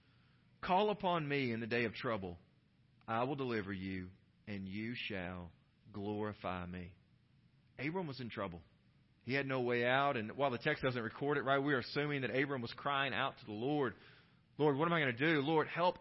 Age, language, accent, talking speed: 40-59, English, American, 200 wpm